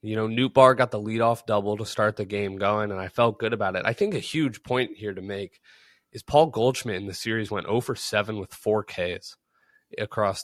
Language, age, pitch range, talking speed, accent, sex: English, 20-39, 95-115 Hz, 235 wpm, American, male